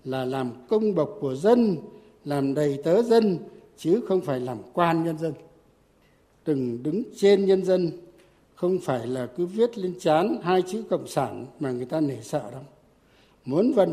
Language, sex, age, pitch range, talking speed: Vietnamese, male, 60-79, 145-195 Hz, 175 wpm